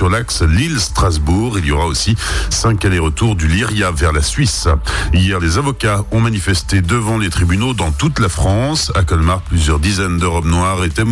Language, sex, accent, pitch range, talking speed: French, male, French, 85-115 Hz, 180 wpm